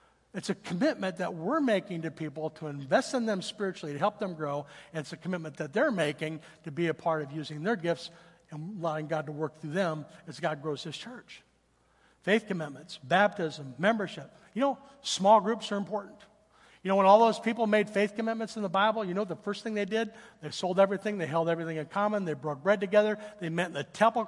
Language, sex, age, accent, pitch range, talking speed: English, male, 60-79, American, 160-215 Hz, 220 wpm